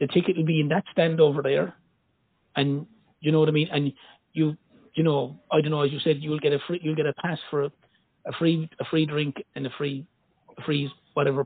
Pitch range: 150-200 Hz